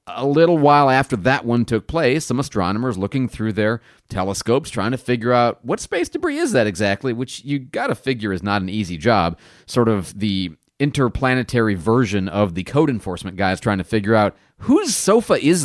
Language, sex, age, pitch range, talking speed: English, male, 30-49, 100-135 Hz, 195 wpm